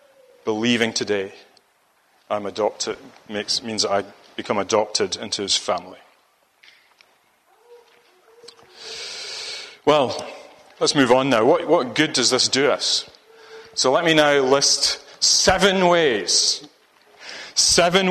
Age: 30-49